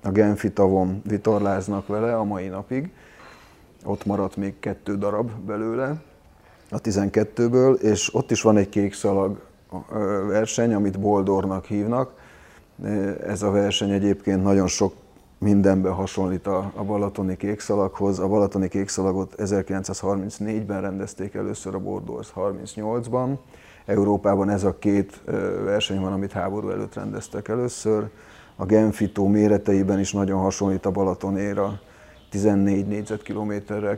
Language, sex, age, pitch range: Hungarian, male, 30-49, 95-105 Hz